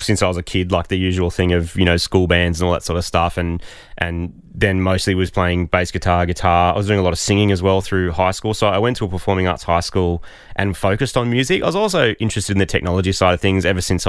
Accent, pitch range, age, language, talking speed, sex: Australian, 90-105 Hz, 20-39, English, 280 wpm, male